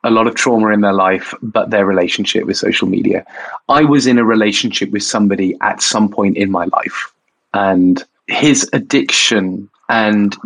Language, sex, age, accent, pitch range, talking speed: English, male, 20-39, British, 100-115 Hz, 170 wpm